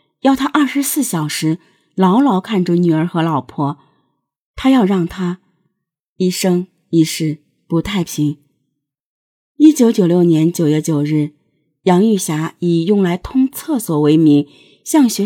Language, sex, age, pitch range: Chinese, female, 30-49, 160-205 Hz